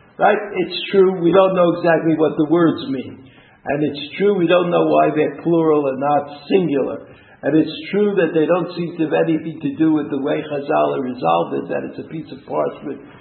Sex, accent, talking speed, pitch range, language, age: male, American, 210 wpm, 145-190 Hz, English, 60-79